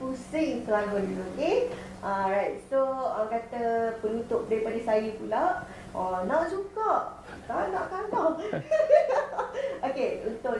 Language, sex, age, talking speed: Malay, female, 20-39, 110 wpm